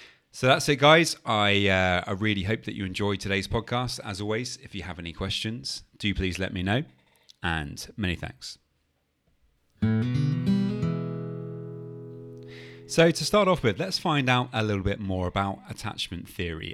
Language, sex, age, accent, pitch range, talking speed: English, male, 30-49, British, 90-125 Hz, 160 wpm